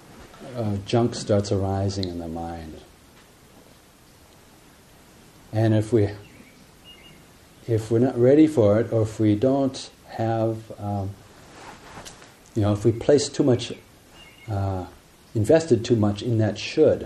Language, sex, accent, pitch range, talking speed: English, male, American, 100-115 Hz, 125 wpm